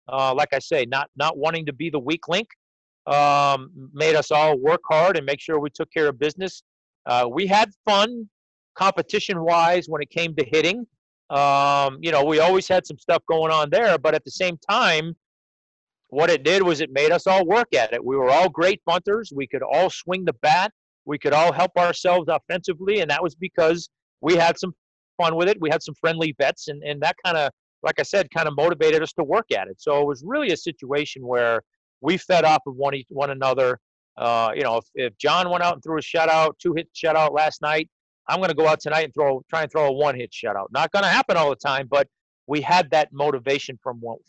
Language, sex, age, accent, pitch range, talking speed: English, male, 40-59, American, 140-175 Hz, 230 wpm